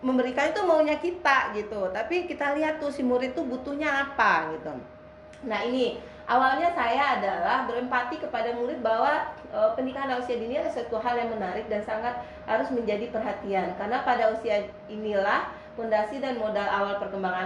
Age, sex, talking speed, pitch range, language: 30-49, female, 160 wpm, 220-285 Hz, Indonesian